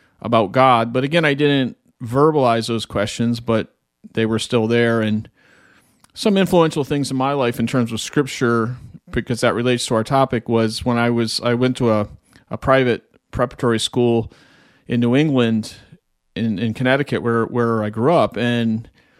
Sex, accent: male, American